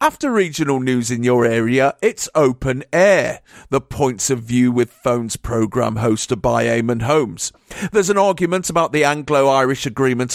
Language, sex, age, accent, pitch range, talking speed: English, male, 50-69, British, 125-170 Hz, 155 wpm